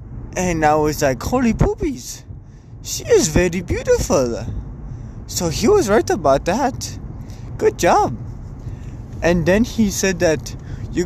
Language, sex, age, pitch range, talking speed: English, male, 20-39, 120-180 Hz, 130 wpm